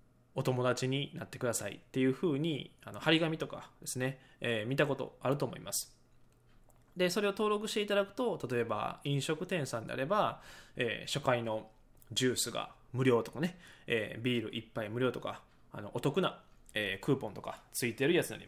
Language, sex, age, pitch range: Japanese, male, 20-39, 120-175 Hz